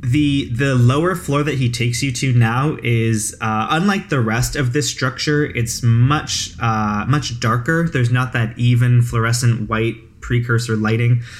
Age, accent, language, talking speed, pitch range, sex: 20-39, American, English, 165 wpm, 110-125 Hz, male